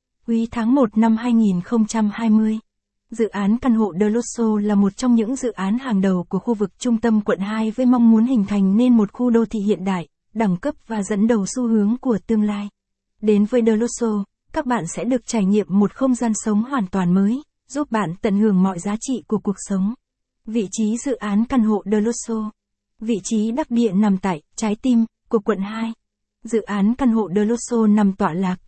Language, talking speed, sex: Vietnamese, 205 wpm, female